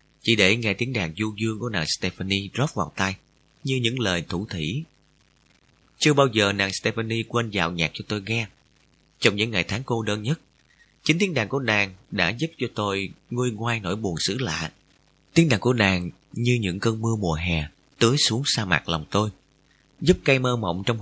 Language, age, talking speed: Vietnamese, 30-49, 205 wpm